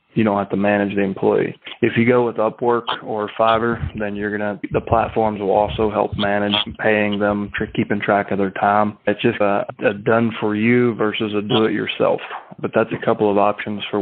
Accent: American